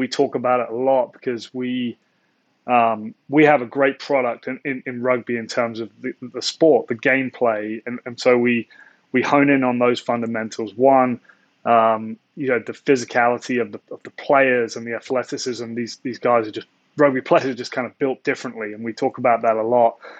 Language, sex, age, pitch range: English, male, 20-39, 120-135 Hz